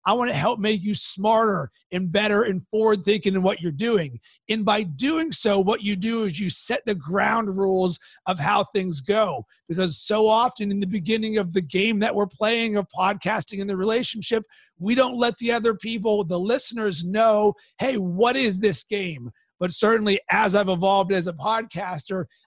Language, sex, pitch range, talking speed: English, male, 185-220 Hz, 190 wpm